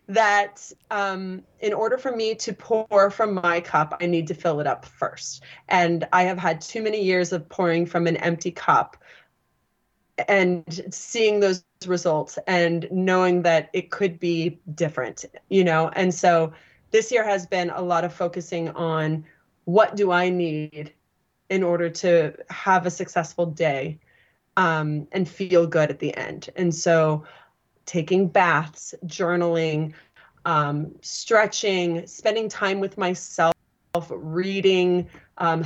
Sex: female